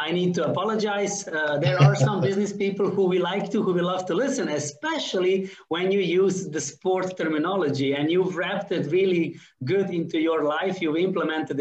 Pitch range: 160-220 Hz